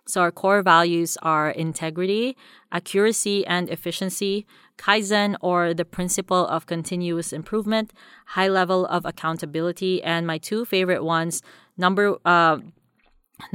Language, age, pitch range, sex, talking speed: English, 20-39, 160-185 Hz, female, 120 wpm